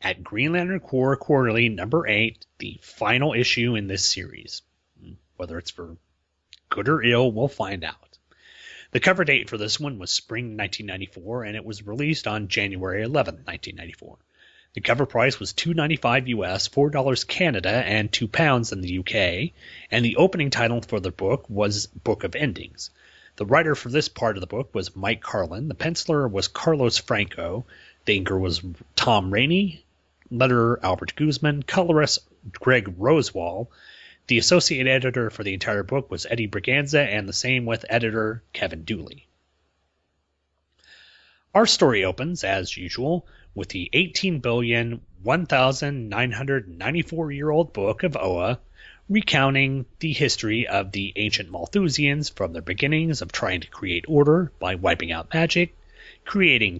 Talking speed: 150 wpm